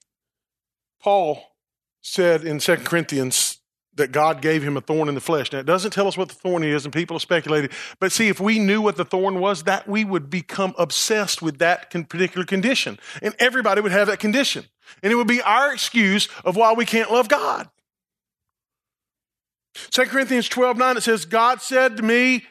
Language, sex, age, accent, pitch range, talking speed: English, male, 40-59, American, 160-240 Hz, 195 wpm